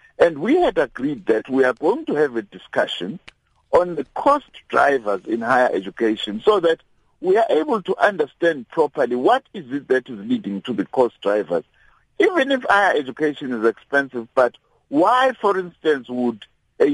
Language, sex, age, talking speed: English, male, 60-79, 175 wpm